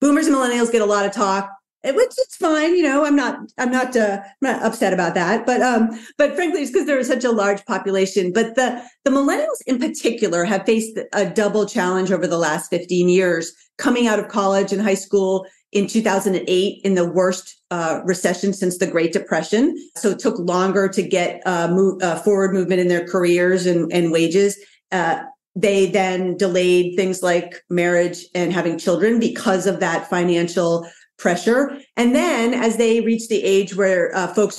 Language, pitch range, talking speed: English, 185-245 Hz, 195 wpm